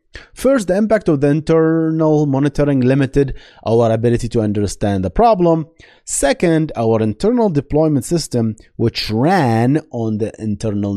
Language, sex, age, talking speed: English, male, 30-49, 130 wpm